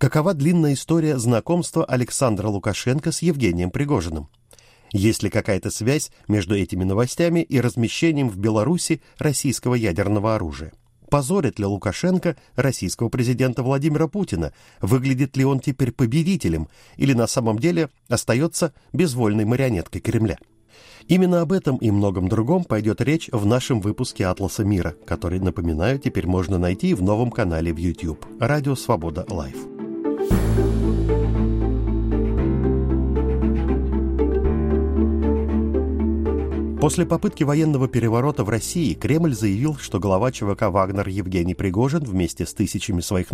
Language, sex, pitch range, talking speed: Russian, male, 95-145 Hz, 120 wpm